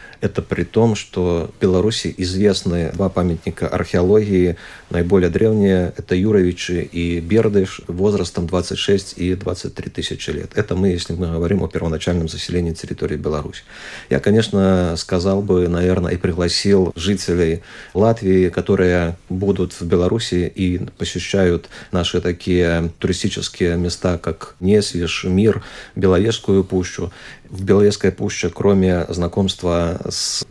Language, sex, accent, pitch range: Russian, male, native, 90-100 Hz